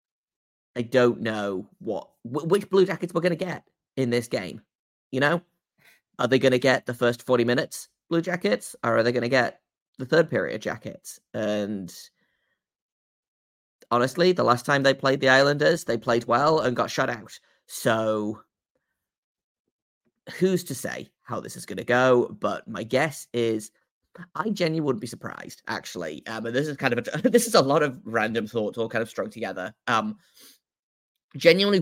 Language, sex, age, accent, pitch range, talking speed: English, male, 30-49, British, 115-155 Hz, 175 wpm